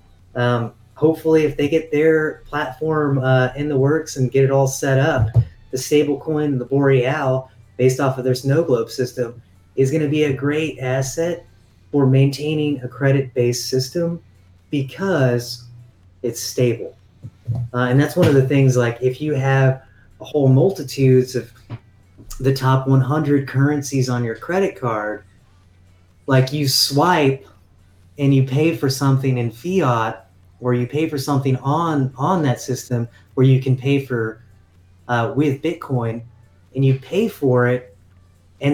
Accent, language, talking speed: American, English, 155 wpm